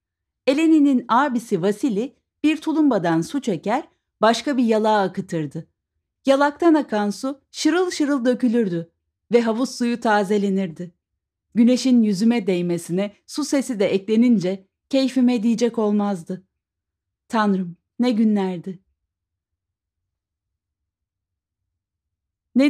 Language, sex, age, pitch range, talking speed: Turkish, female, 40-59, 175-245 Hz, 95 wpm